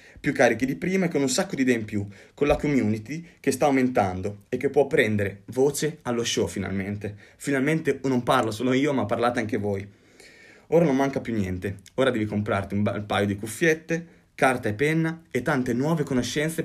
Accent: native